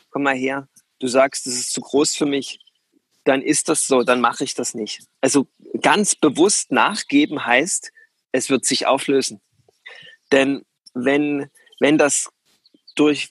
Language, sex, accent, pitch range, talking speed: German, male, German, 125-150 Hz, 155 wpm